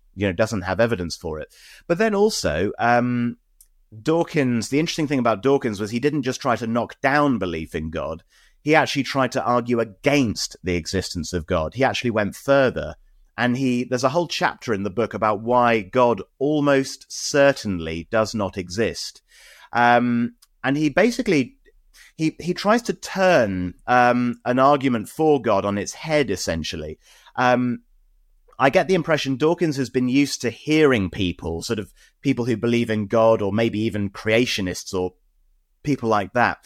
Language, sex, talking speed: English, male, 170 wpm